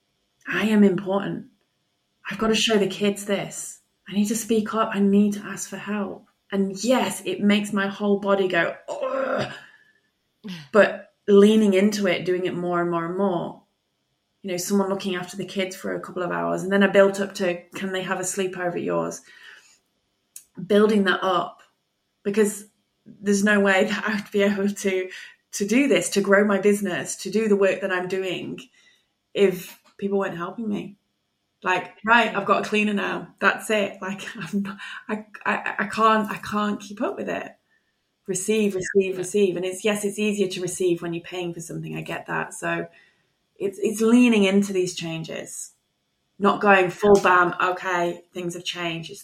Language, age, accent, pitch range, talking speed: English, 20-39, British, 180-210 Hz, 185 wpm